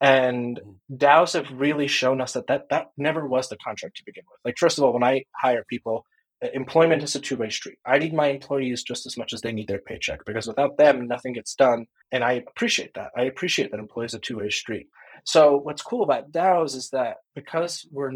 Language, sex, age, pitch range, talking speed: English, male, 30-49, 120-140 Hz, 225 wpm